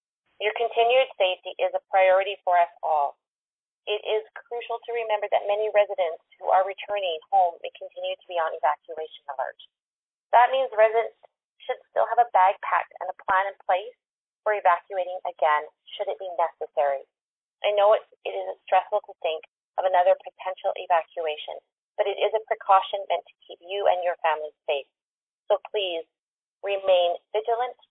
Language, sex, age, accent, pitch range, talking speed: English, female, 30-49, American, 175-220 Hz, 170 wpm